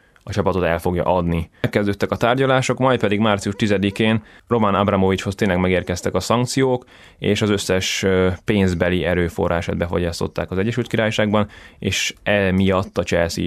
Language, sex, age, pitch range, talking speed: Hungarian, male, 20-39, 90-105 Hz, 140 wpm